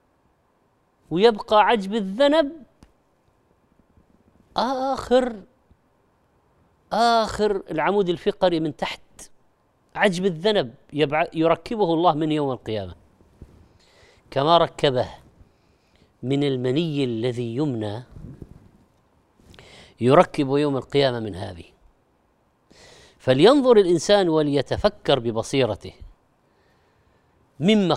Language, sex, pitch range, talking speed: Arabic, female, 135-205 Hz, 70 wpm